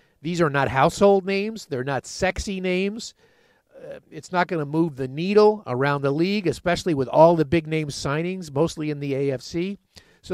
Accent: American